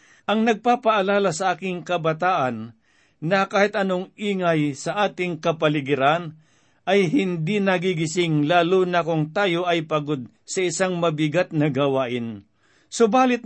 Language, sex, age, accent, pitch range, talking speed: Filipino, male, 50-69, native, 155-195 Hz, 120 wpm